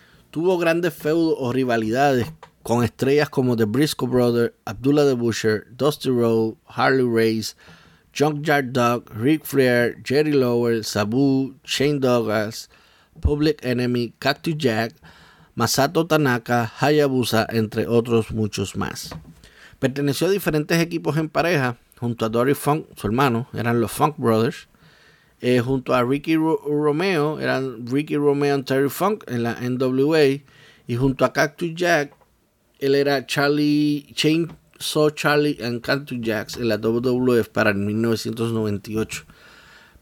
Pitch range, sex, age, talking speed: 115-150 Hz, male, 30-49, 130 wpm